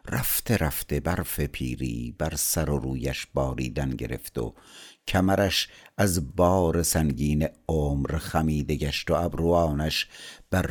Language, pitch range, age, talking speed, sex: Persian, 75-95 Hz, 60-79, 120 wpm, male